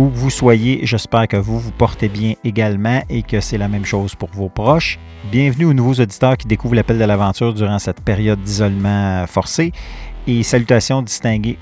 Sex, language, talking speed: male, French, 185 wpm